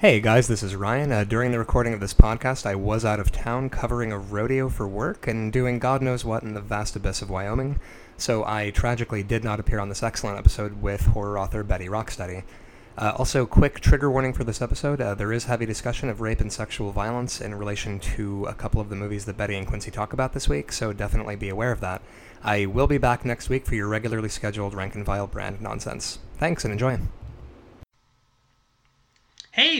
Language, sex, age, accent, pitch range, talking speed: English, male, 20-39, American, 105-135 Hz, 215 wpm